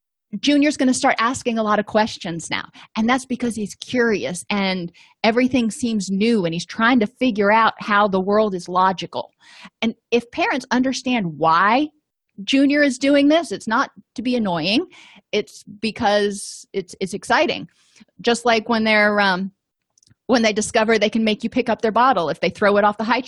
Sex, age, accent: female, 30-49, American